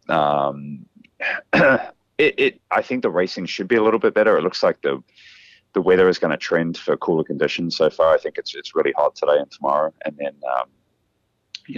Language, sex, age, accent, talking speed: English, male, 30-49, Australian, 210 wpm